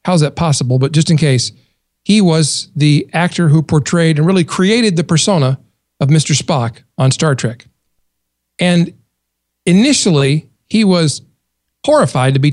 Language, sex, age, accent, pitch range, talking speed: English, male, 40-59, American, 130-170 Hz, 150 wpm